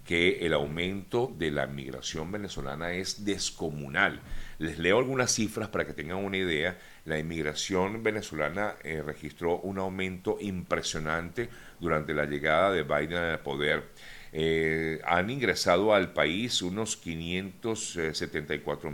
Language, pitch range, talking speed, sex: Spanish, 75-95 Hz, 125 wpm, male